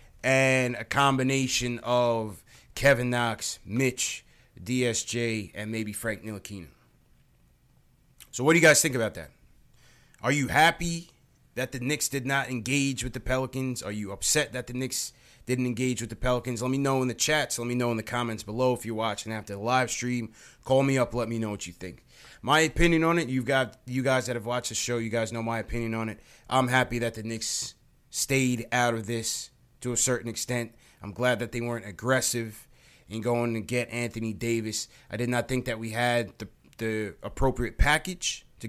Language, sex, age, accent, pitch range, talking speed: English, male, 30-49, American, 110-130 Hz, 205 wpm